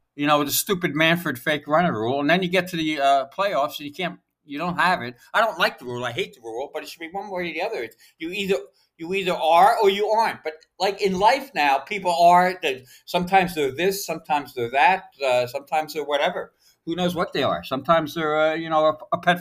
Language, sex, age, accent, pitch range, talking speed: English, male, 60-79, American, 130-180 Hz, 255 wpm